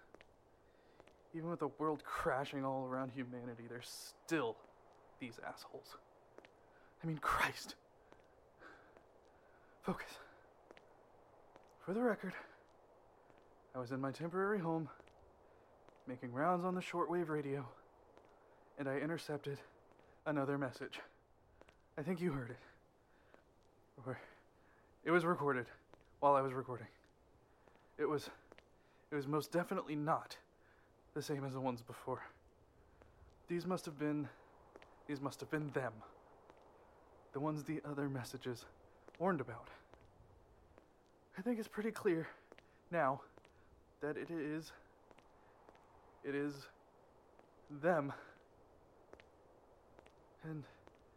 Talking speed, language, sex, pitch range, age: 105 wpm, English, male, 135-165 Hz, 20-39